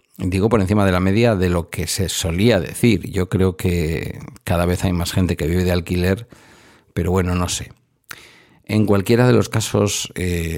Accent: Spanish